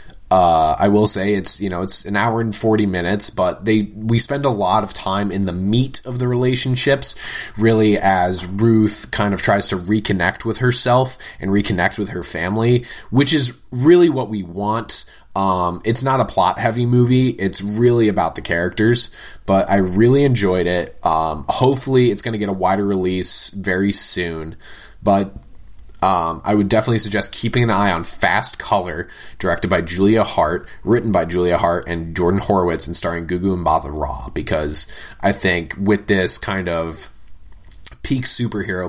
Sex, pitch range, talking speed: male, 95-120 Hz, 175 wpm